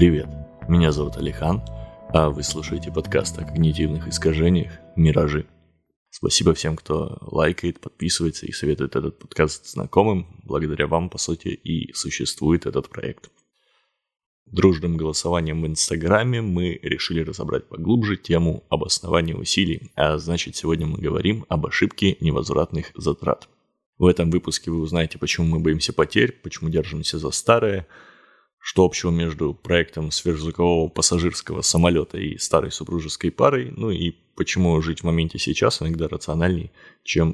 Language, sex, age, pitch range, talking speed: Russian, male, 20-39, 80-90 Hz, 135 wpm